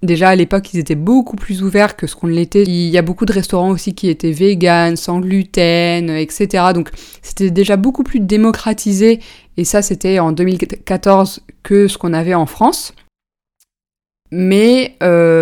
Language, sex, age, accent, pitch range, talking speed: French, female, 20-39, French, 170-200 Hz, 170 wpm